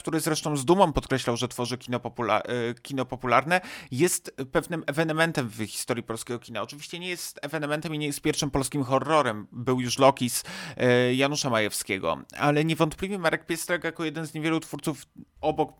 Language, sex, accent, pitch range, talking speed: Polish, male, native, 115-145 Hz, 155 wpm